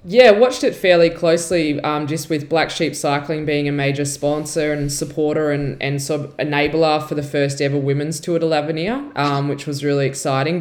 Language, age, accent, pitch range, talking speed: English, 20-39, Australian, 140-155 Hz, 200 wpm